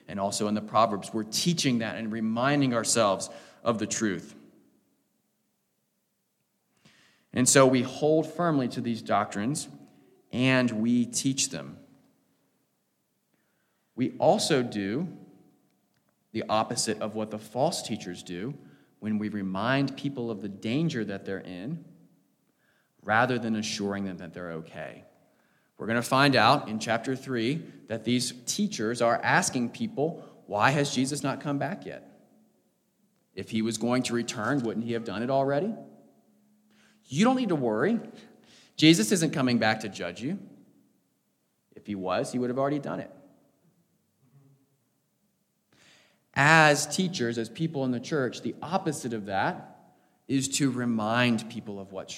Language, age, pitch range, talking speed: English, 30-49, 110-140 Hz, 145 wpm